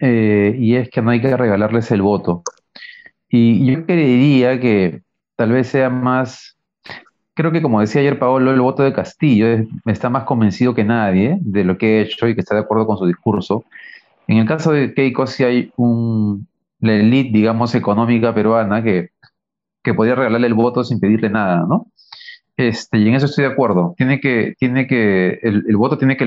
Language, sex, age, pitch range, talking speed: Spanish, male, 40-59, 110-140 Hz, 200 wpm